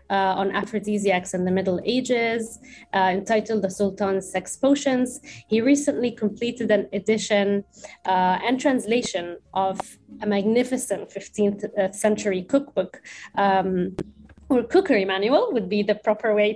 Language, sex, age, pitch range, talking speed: English, female, 20-39, 195-235 Hz, 125 wpm